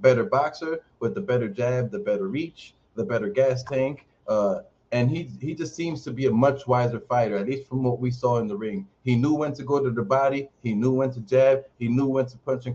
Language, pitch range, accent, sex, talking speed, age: English, 125-150 Hz, American, male, 250 wpm, 30-49